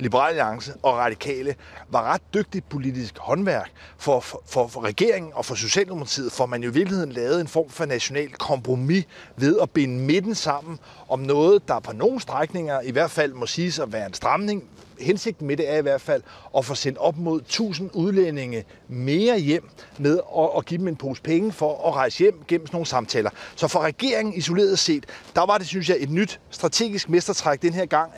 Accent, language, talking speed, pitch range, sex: native, Danish, 195 wpm, 140-190 Hz, male